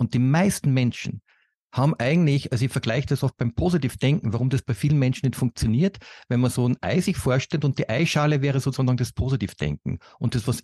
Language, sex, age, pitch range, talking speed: German, male, 50-69, 115-150 Hz, 210 wpm